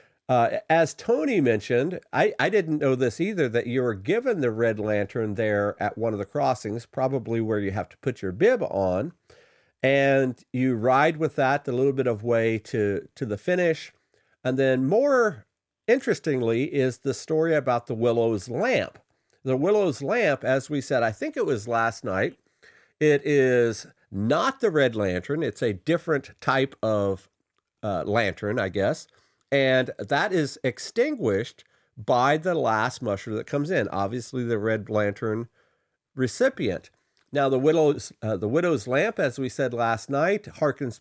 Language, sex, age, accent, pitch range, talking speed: English, male, 50-69, American, 115-145 Hz, 165 wpm